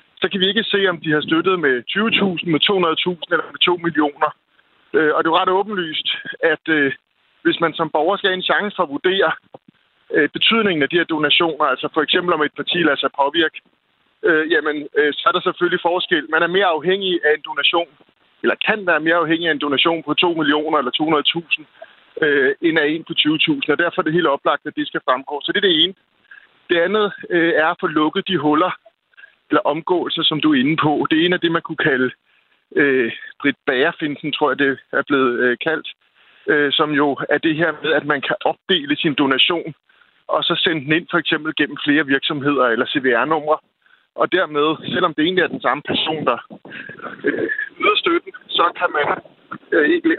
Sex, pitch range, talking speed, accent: male, 150-210 Hz, 200 wpm, native